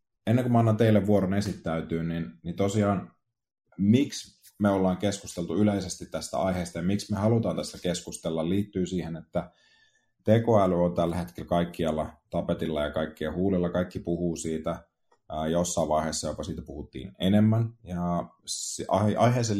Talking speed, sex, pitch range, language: 140 wpm, male, 85-100 Hz, Finnish